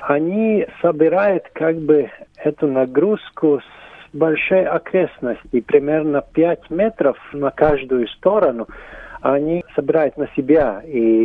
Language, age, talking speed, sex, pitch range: Russian, 40-59, 105 wpm, male, 130-160 Hz